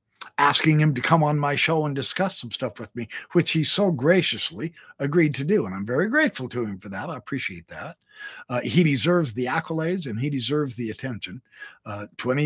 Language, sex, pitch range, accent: English, male, 125-180 Hz, American